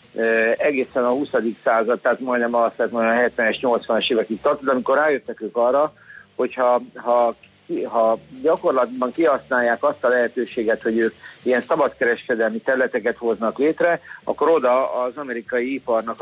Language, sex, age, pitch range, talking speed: Hungarian, male, 50-69, 115-140 Hz, 135 wpm